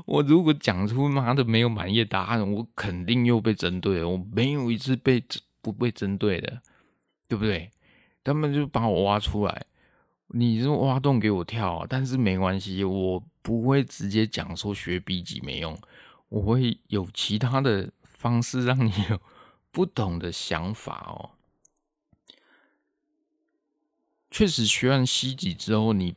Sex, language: male, Chinese